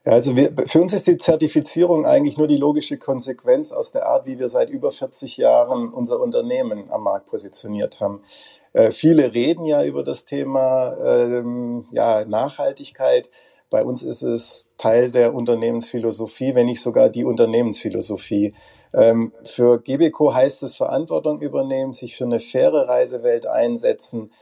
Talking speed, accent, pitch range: 150 wpm, German, 120-165 Hz